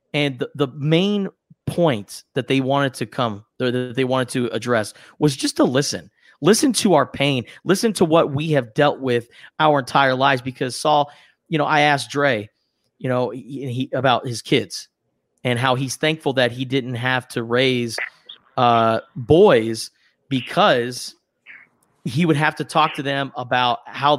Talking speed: 165 wpm